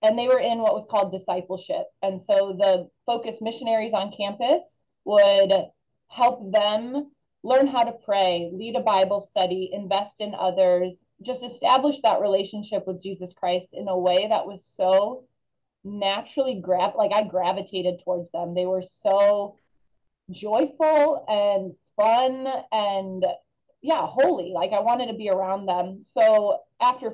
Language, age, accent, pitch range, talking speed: English, 20-39, American, 190-240 Hz, 150 wpm